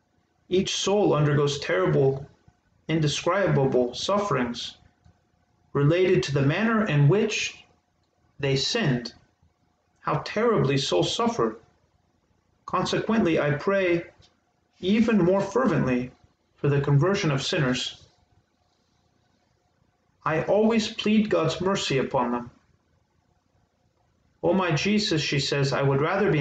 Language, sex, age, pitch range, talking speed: Spanish, male, 40-59, 105-175 Hz, 100 wpm